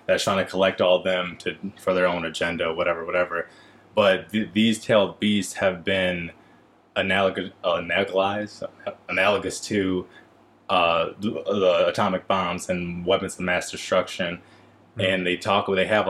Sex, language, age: male, English, 20-39